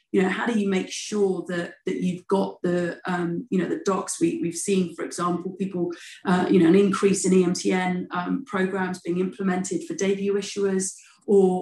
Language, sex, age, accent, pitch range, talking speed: English, female, 30-49, British, 170-195 Hz, 195 wpm